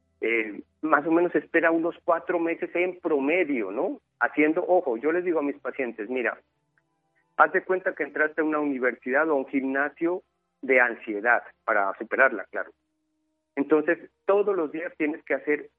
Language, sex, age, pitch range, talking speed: Spanish, male, 40-59, 125-170 Hz, 165 wpm